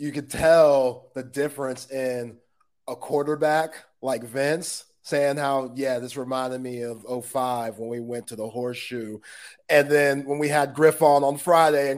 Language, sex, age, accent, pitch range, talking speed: English, male, 30-49, American, 130-165 Hz, 170 wpm